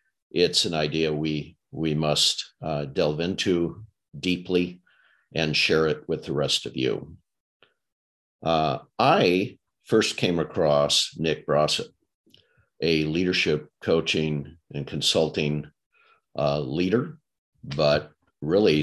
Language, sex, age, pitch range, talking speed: English, male, 50-69, 75-85 Hz, 110 wpm